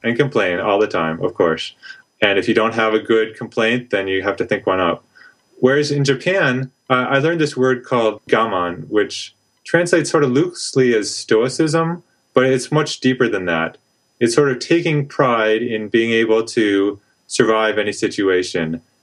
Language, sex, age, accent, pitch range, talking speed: English, male, 30-49, American, 95-130 Hz, 180 wpm